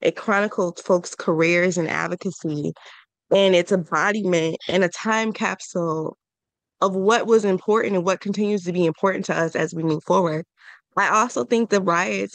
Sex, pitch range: female, 170-200 Hz